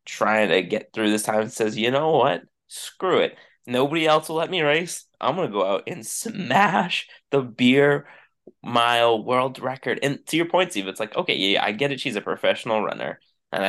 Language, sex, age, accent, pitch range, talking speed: English, male, 20-39, American, 110-140 Hz, 205 wpm